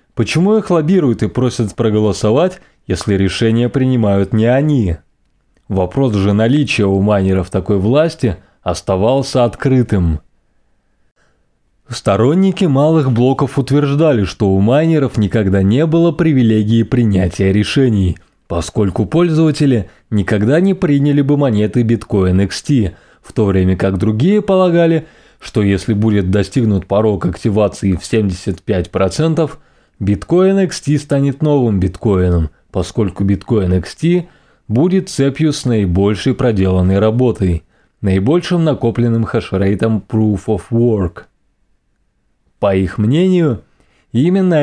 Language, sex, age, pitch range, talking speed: Russian, male, 20-39, 100-140 Hz, 110 wpm